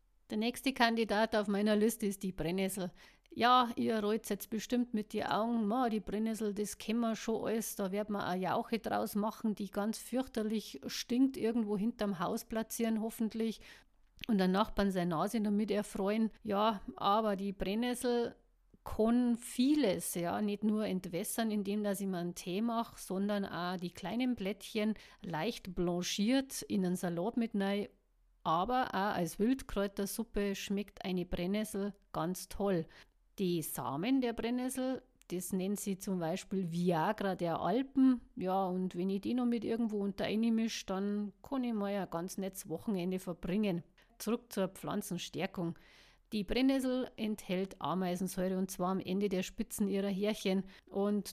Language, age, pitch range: German, 50-69, 190-225 Hz